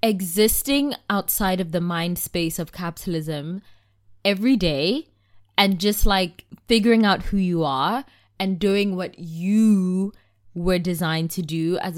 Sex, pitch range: female, 165-215 Hz